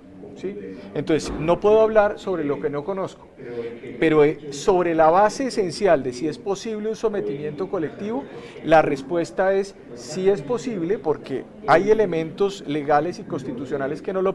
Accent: Colombian